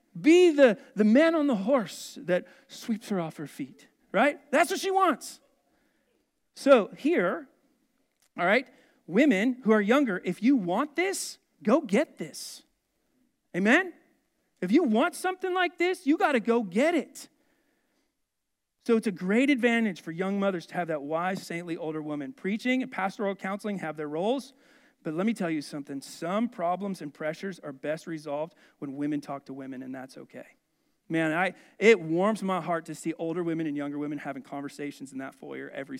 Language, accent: English, American